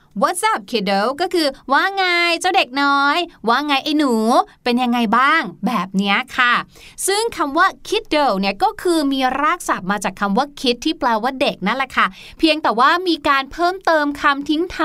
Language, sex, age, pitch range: Thai, female, 20-39, 235-325 Hz